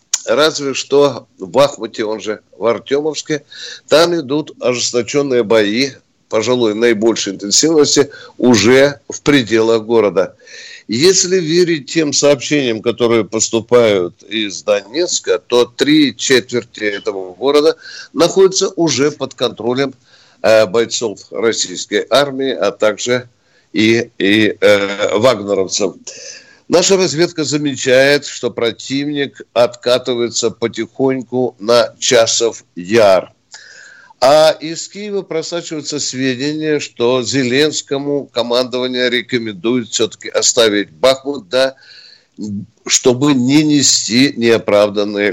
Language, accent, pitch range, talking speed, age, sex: Russian, native, 115-155 Hz, 95 wpm, 50-69, male